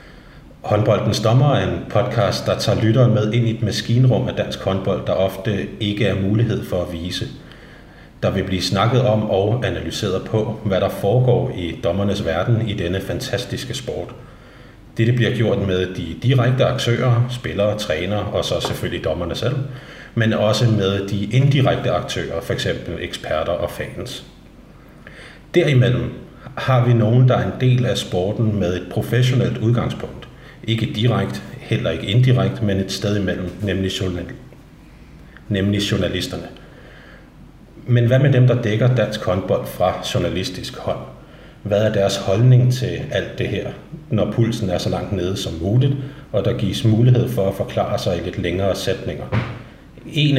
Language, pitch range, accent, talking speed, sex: Danish, 100-125 Hz, native, 155 wpm, male